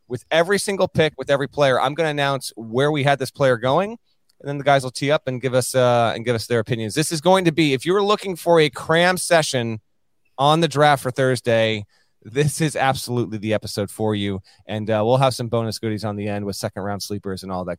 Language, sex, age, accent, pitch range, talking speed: English, male, 30-49, American, 115-145 Hz, 250 wpm